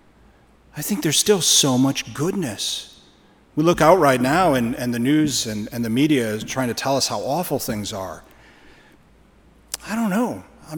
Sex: male